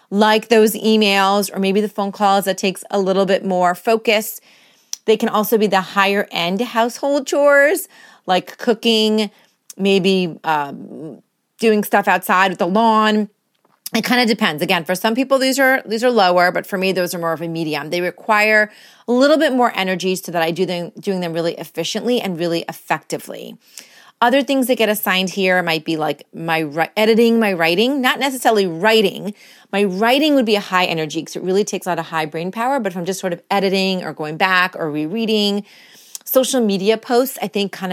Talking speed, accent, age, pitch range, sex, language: 200 wpm, American, 30-49, 180-225 Hz, female, English